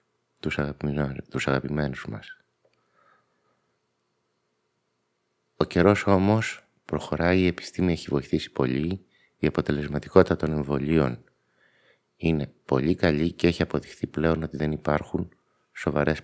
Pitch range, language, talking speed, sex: 70-85 Hz, Greek, 100 wpm, male